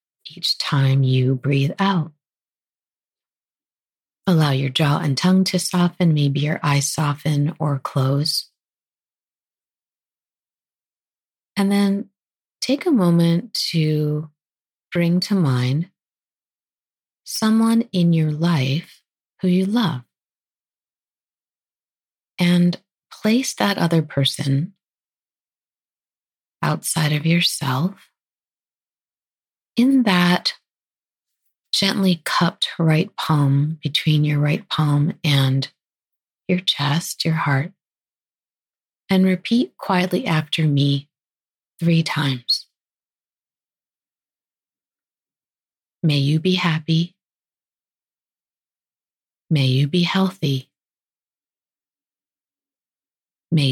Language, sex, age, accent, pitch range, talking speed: English, female, 30-49, American, 145-185 Hz, 80 wpm